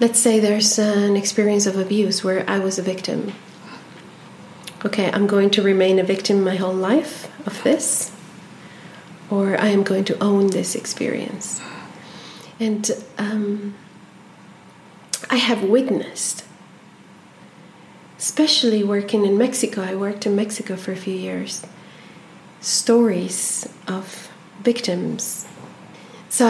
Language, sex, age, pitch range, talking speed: Swedish, female, 40-59, 190-230 Hz, 120 wpm